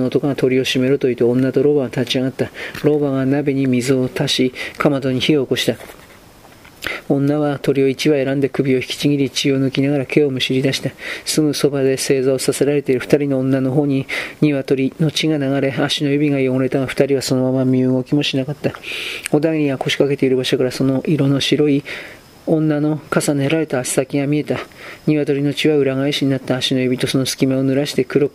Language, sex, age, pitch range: Japanese, male, 40-59, 130-145 Hz